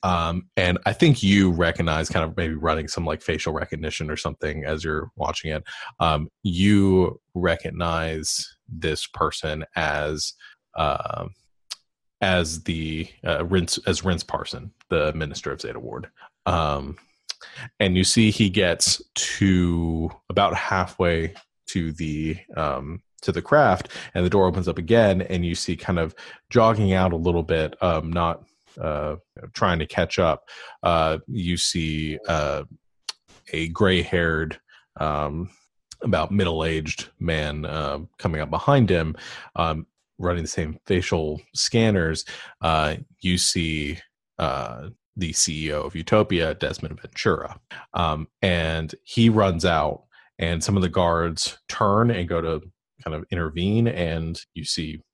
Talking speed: 140 wpm